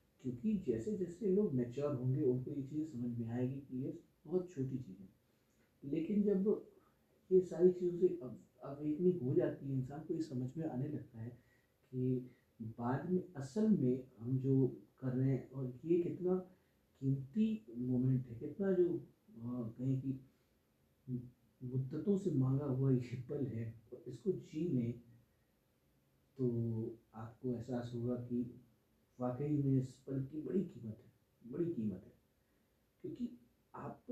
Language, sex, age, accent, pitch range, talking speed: Hindi, male, 50-69, native, 120-160 Hz, 60 wpm